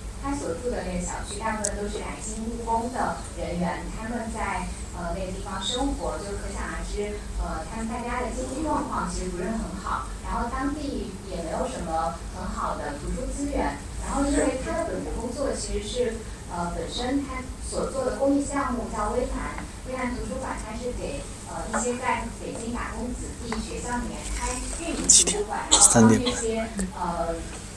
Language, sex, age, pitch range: English, female, 10-29, 210-265 Hz